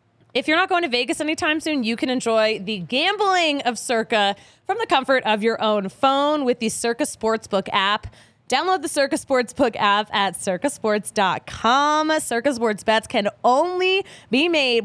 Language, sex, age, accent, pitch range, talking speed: English, female, 20-39, American, 205-280 Hz, 165 wpm